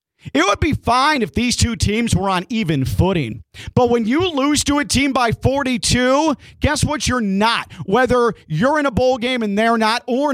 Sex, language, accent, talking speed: male, English, American, 205 wpm